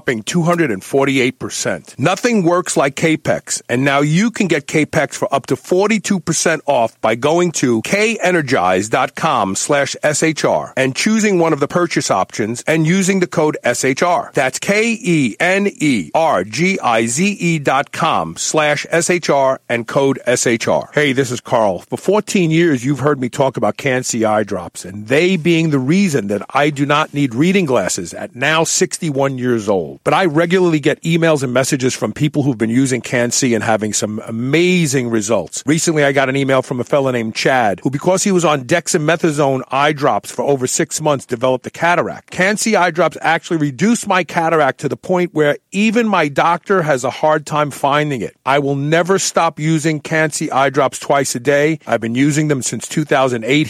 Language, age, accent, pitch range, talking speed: English, 50-69, American, 130-175 Hz, 175 wpm